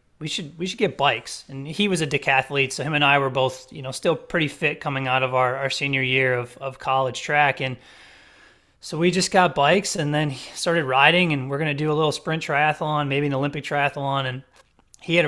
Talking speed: 230 wpm